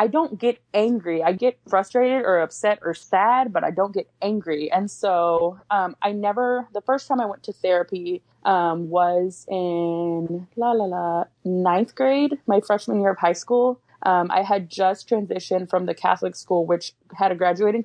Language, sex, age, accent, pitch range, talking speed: English, female, 20-39, American, 175-215 Hz, 185 wpm